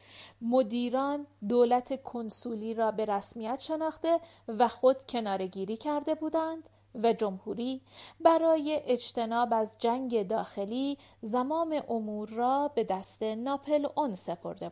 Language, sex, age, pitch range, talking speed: Persian, female, 40-59, 200-275 Hz, 110 wpm